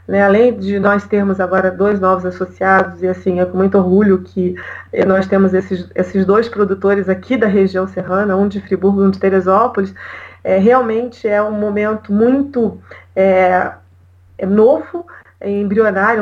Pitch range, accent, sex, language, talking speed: 190-225 Hz, Brazilian, female, Portuguese, 160 wpm